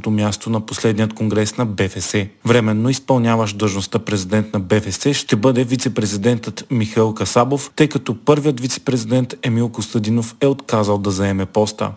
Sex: male